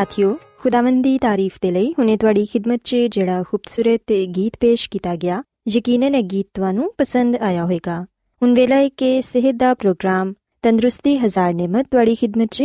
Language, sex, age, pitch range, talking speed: Urdu, female, 20-39, 195-270 Hz, 70 wpm